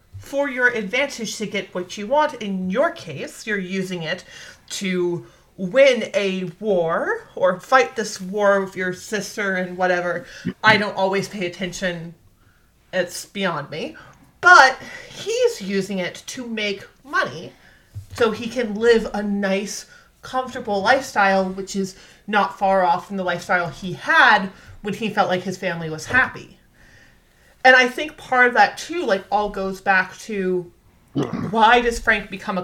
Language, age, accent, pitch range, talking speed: English, 30-49, American, 180-215 Hz, 155 wpm